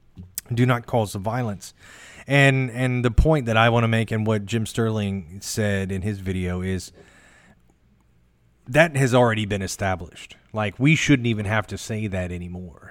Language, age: English, 30-49